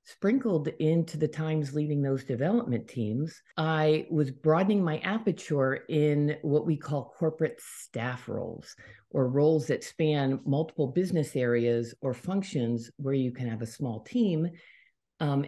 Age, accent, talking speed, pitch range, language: 50-69, American, 145 wpm, 125-155 Hz, English